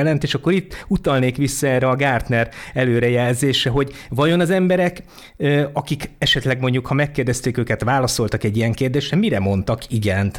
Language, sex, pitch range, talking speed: Hungarian, male, 105-140 Hz, 155 wpm